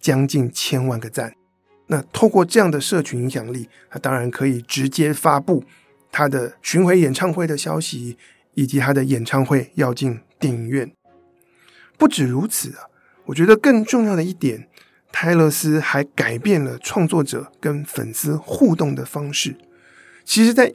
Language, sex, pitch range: Chinese, male, 130-160 Hz